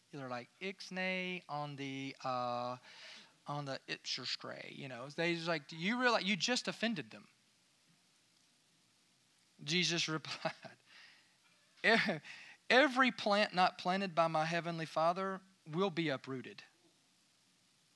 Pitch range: 140-180 Hz